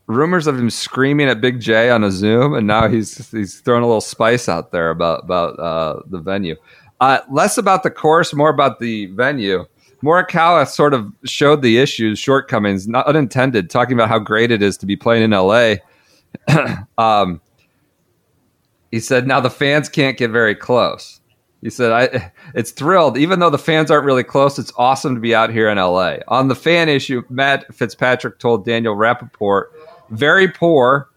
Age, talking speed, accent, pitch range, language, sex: 40-59, 185 wpm, American, 105-135 Hz, English, male